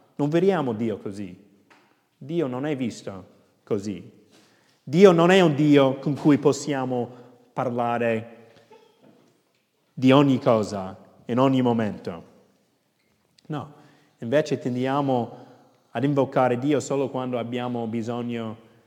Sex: male